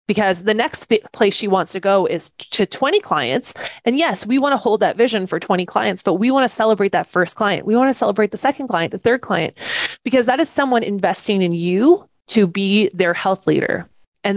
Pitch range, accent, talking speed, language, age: 180-225 Hz, American, 225 wpm, English, 20-39